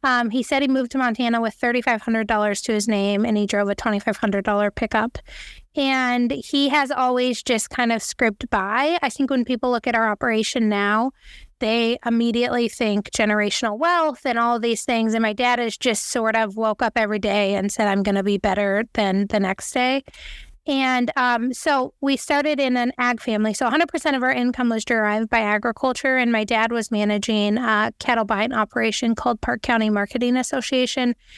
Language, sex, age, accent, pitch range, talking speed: English, female, 20-39, American, 220-255 Hz, 190 wpm